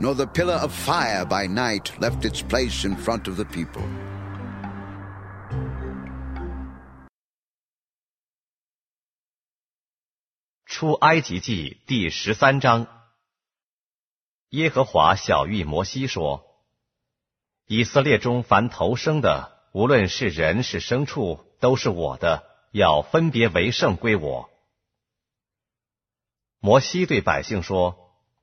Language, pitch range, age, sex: Korean, 100-125 Hz, 50-69, male